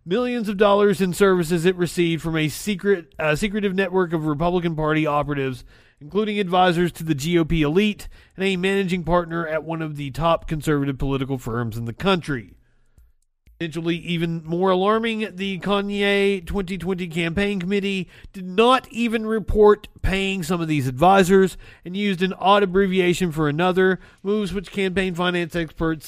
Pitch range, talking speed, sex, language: 150-195 Hz, 155 wpm, male, English